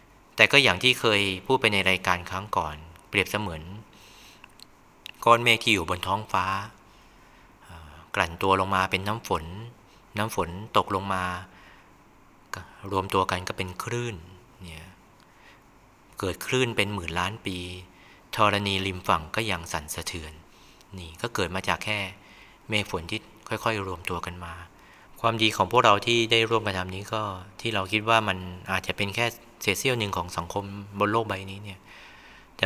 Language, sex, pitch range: Thai, male, 90-110 Hz